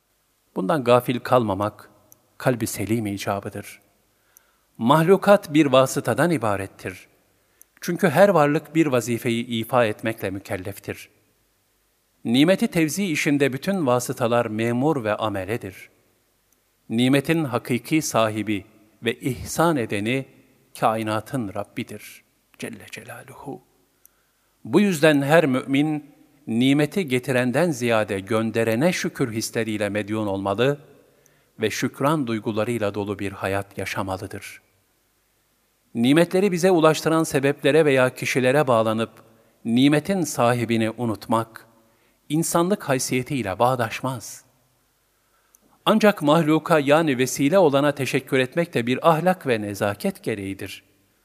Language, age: Turkish, 50-69